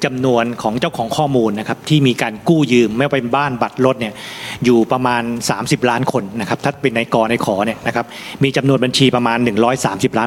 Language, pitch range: Thai, 115-145 Hz